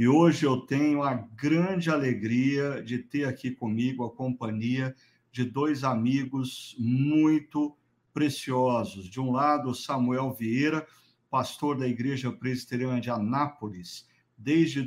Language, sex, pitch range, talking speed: Portuguese, male, 125-145 Hz, 125 wpm